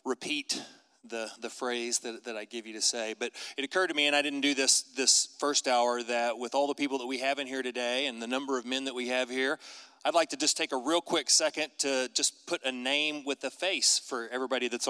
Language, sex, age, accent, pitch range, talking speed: English, male, 30-49, American, 125-160 Hz, 260 wpm